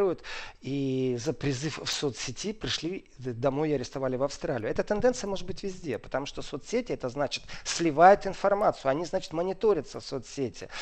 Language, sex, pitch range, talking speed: Russian, male, 140-180 Hz, 155 wpm